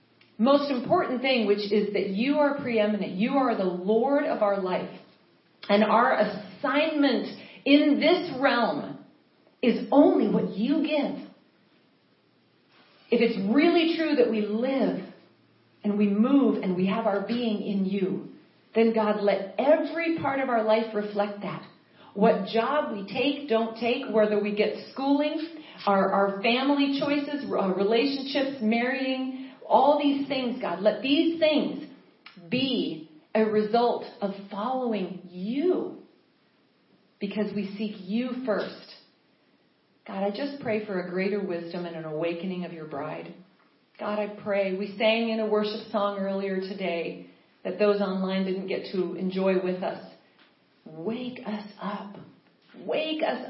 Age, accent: 40-59, American